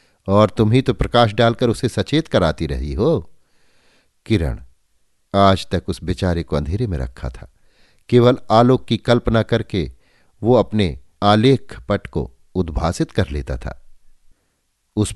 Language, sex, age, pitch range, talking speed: Hindi, male, 50-69, 85-110 Hz, 145 wpm